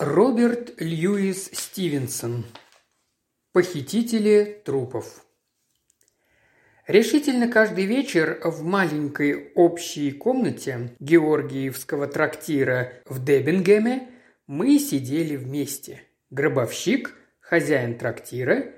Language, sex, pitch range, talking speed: Russian, male, 145-195 Hz, 70 wpm